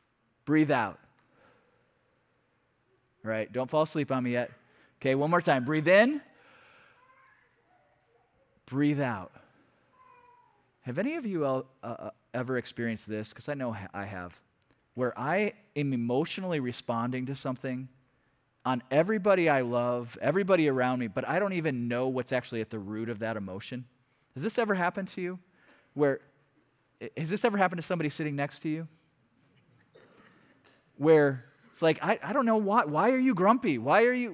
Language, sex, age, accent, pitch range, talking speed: English, male, 30-49, American, 130-210 Hz, 160 wpm